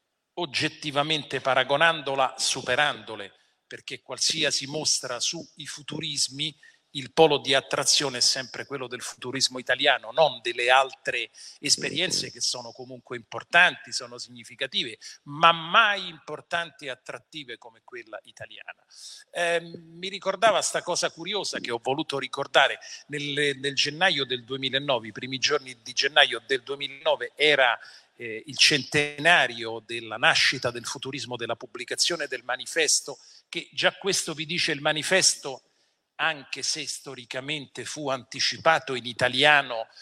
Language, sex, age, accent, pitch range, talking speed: Italian, male, 40-59, native, 130-165 Hz, 125 wpm